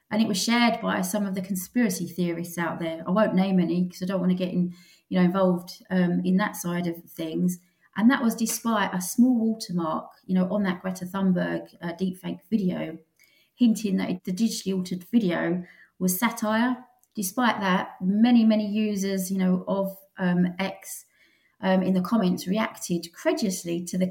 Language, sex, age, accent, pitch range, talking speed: English, female, 30-49, British, 180-210 Hz, 185 wpm